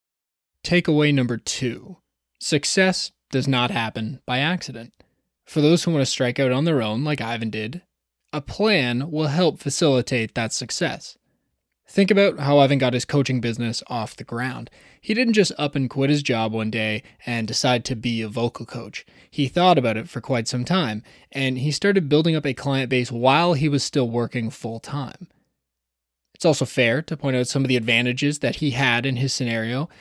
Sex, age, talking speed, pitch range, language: male, 20-39, 190 wpm, 120-150 Hz, English